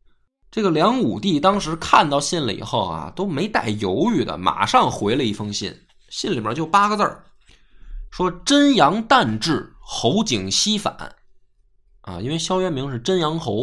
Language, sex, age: Chinese, male, 20-39